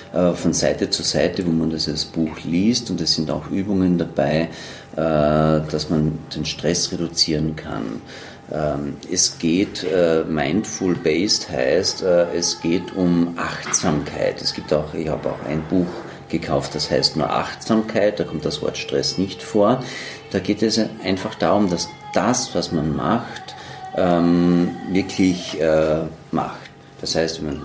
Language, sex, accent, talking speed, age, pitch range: German, male, German, 145 wpm, 40-59, 80-100 Hz